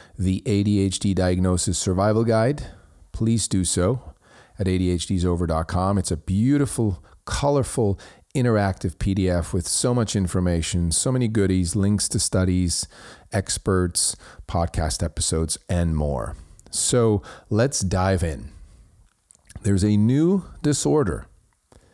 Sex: male